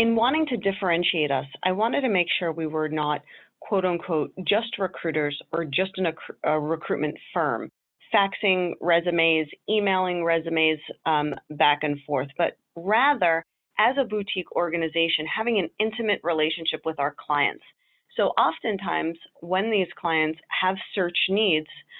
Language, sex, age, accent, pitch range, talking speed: English, female, 30-49, American, 155-195 Hz, 140 wpm